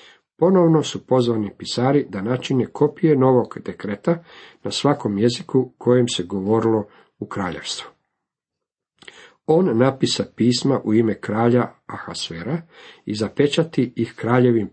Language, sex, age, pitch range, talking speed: Croatian, male, 50-69, 110-145 Hz, 115 wpm